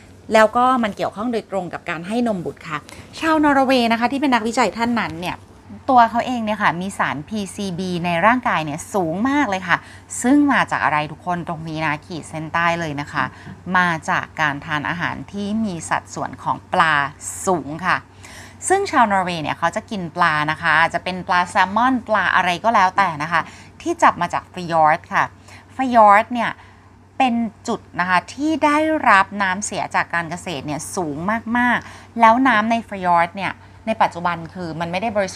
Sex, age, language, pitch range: female, 30-49, Thai, 165-235 Hz